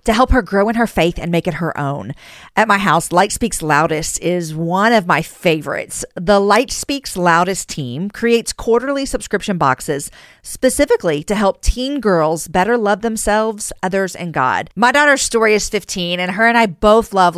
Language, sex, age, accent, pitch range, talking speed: English, female, 40-59, American, 170-220 Hz, 185 wpm